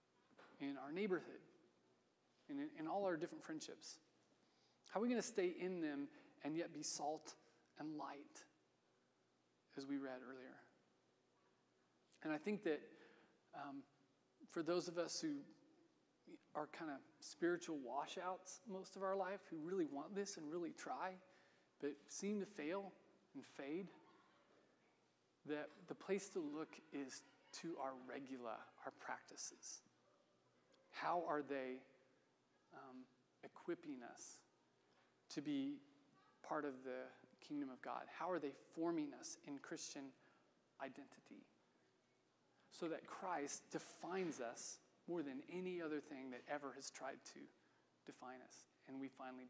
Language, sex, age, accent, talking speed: English, male, 40-59, American, 135 wpm